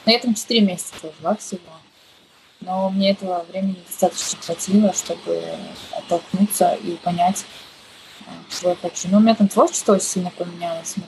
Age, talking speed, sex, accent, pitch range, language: 20-39, 145 wpm, female, native, 175-205 Hz, Russian